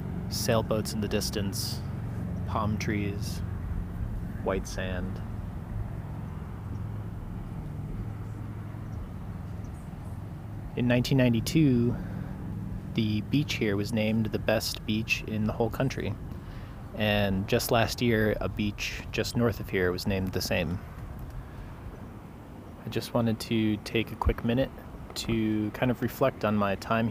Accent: American